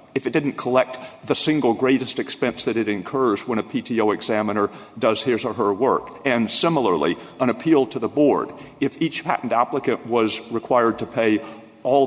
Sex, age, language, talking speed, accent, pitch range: male, 50-69, English, 180 wpm, American, 110-125 Hz